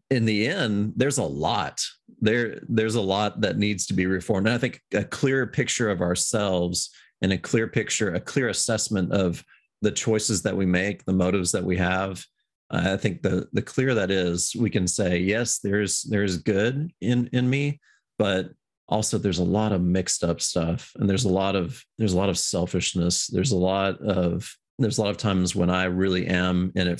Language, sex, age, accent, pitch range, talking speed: English, male, 30-49, American, 90-105 Hz, 205 wpm